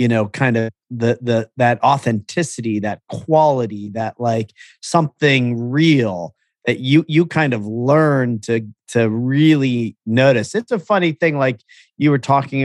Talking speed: 150 wpm